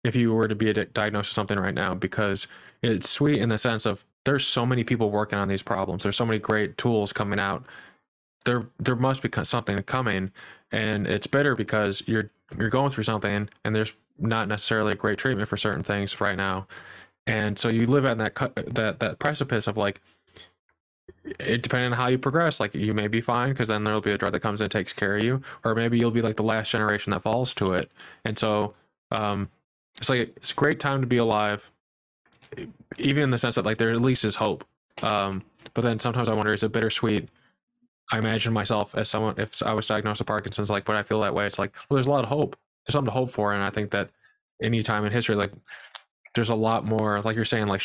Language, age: English, 20-39